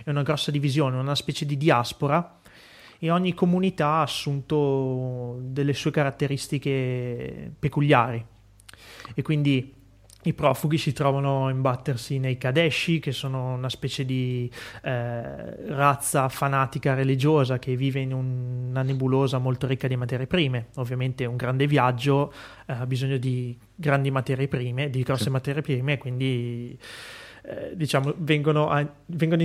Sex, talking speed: male, 135 wpm